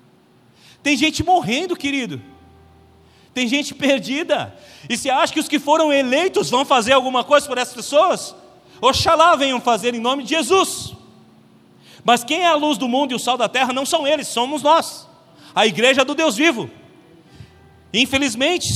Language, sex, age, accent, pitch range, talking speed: Portuguese, male, 40-59, Brazilian, 245-310 Hz, 165 wpm